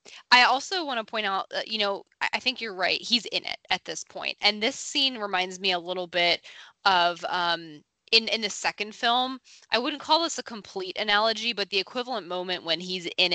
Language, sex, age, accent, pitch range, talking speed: English, female, 20-39, American, 180-220 Hz, 210 wpm